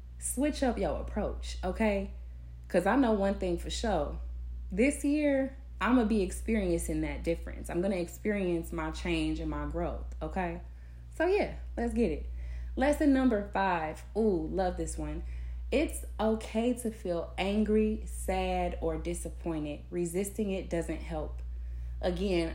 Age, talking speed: 20-39, 150 wpm